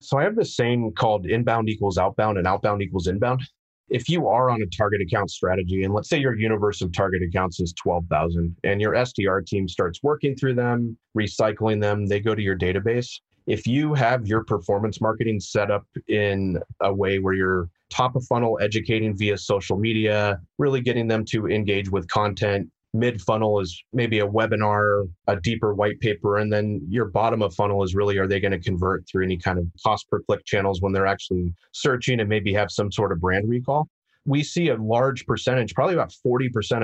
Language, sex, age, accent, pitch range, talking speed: English, male, 30-49, American, 95-115 Hz, 200 wpm